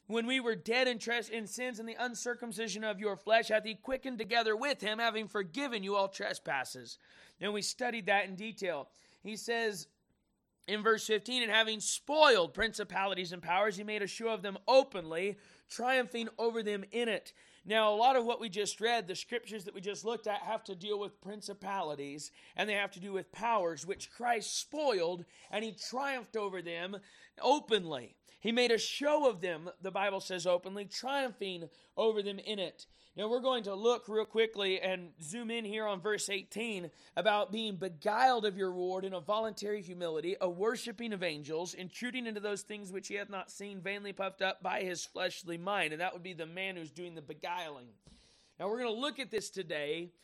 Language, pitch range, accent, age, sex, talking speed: English, 190-230 Hz, American, 30-49, male, 195 wpm